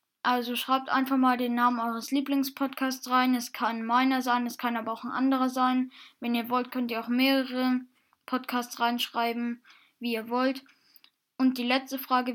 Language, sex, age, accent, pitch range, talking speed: German, female, 10-29, German, 240-265 Hz, 175 wpm